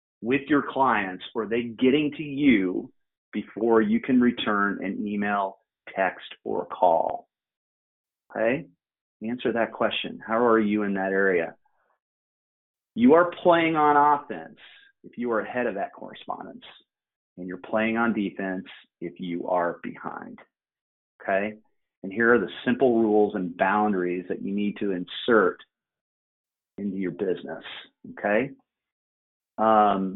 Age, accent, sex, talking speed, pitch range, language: 30-49, American, male, 135 wpm, 95-115 Hz, English